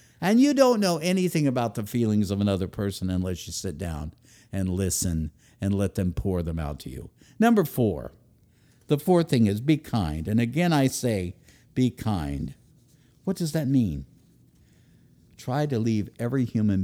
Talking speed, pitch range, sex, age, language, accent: 170 wpm, 90-130 Hz, male, 60-79, English, American